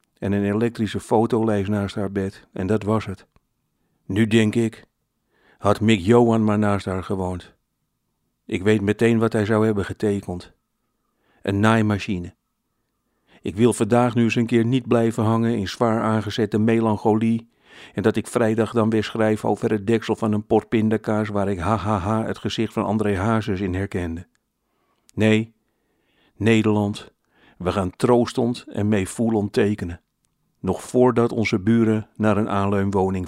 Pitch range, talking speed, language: 100-115 Hz, 150 wpm, Dutch